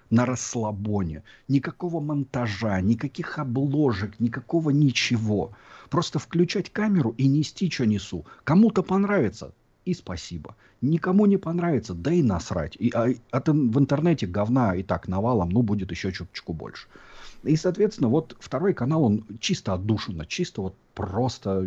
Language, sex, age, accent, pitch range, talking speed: Russian, male, 40-59, native, 95-135 Hz, 135 wpm